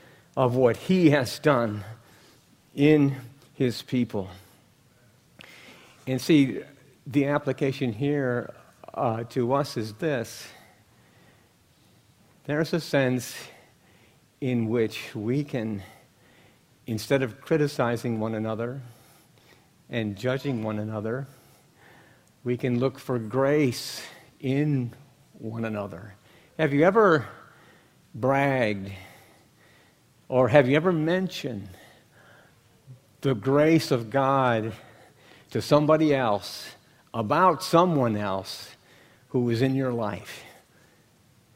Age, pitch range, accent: 50-69, 110-140 Hz, American